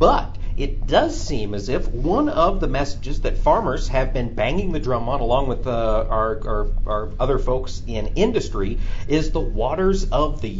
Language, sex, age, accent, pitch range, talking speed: English, male, 50-69, American, 90-130 Hz, 185 wpm